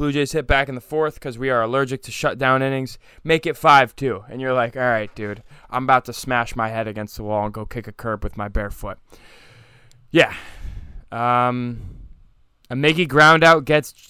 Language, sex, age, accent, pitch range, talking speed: English, male, 20-39, American, 110-150 Hz, 215 wpm